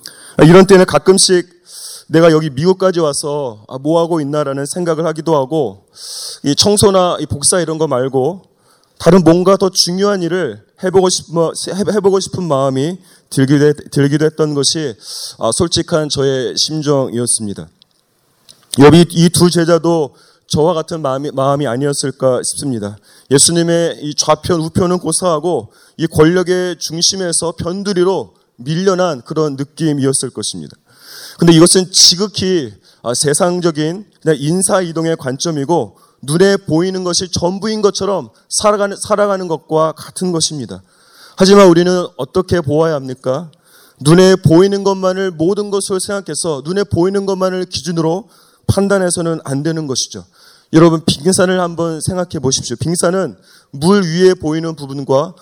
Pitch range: 145-185 Hz